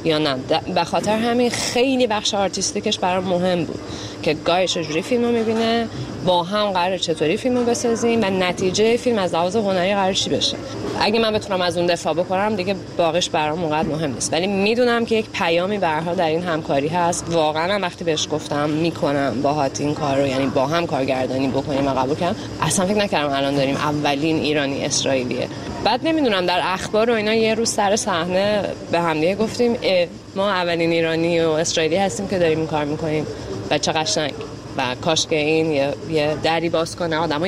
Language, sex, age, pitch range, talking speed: Persian, female, 20-39, 155-195 Hz, 185 wpm